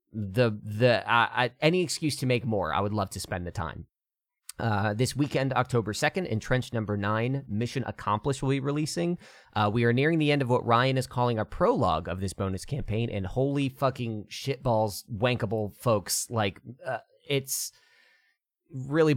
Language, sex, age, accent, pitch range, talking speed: English, male, 30-49, American, 105-135 Hz, 175 wpm